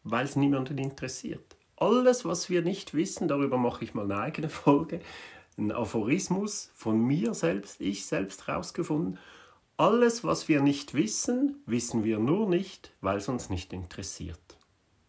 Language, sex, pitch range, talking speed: German, male, 115-160 Hz, 150 wpm